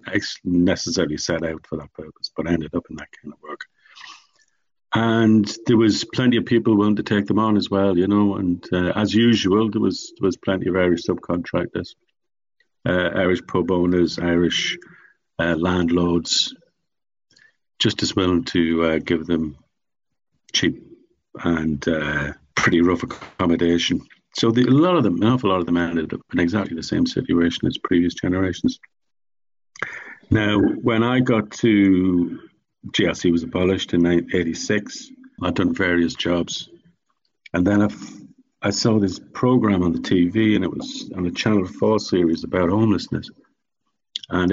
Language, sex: English, male